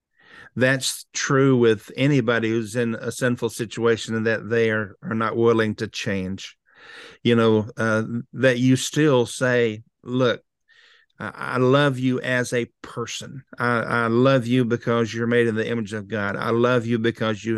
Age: 50-69